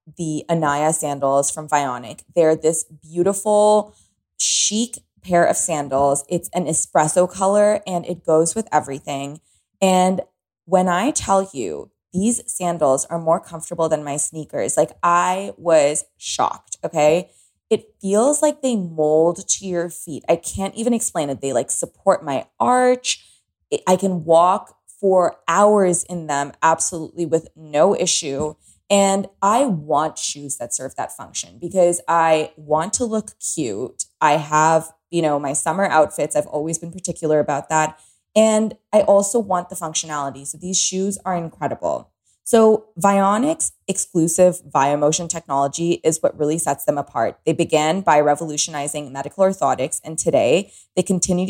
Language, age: English, 20-39